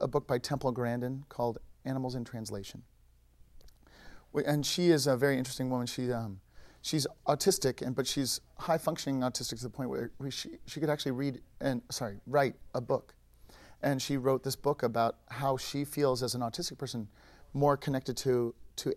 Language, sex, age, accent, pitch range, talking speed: English, male, 40-59, American, 115-145 Hz, 185 wpm